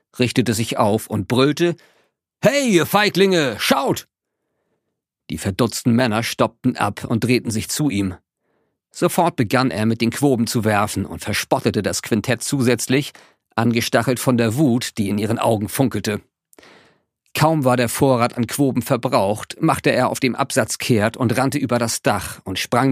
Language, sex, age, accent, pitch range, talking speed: German, male, 50-69, German, 105-130 Hz, 160 wpm